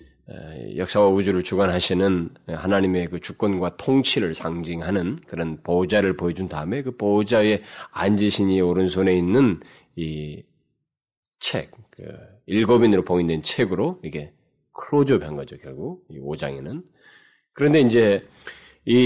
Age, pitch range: 30-49, 85-100 Hz